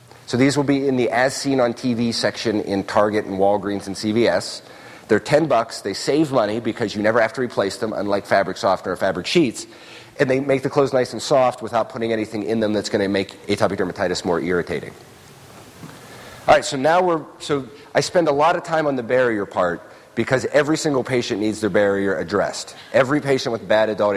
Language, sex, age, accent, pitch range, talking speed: English, male, 40-59, American, 105-140 Hz, 210 wpm